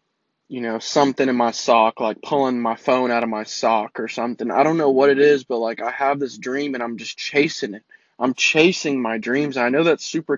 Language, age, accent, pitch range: English, 20-39, American, 130-165 Hz